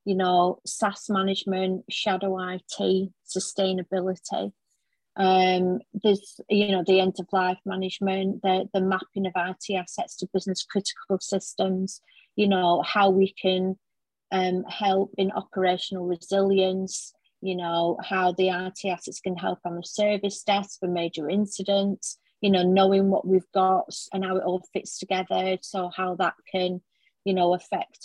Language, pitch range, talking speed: English, 185-205 Hz, 150 wpm